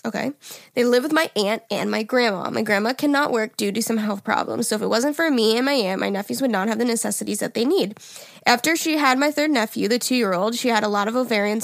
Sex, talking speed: female, 265 wpm